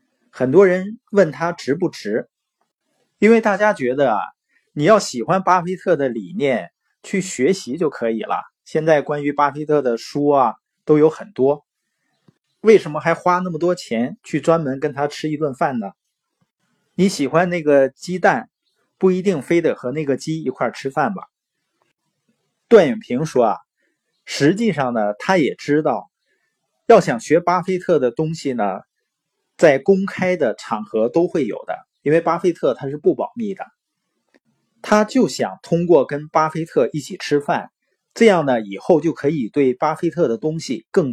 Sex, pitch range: male, 145-190 Hz